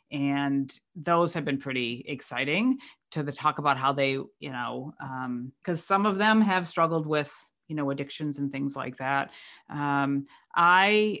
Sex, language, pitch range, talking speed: female, English, 145-185 Hz, 165 wpm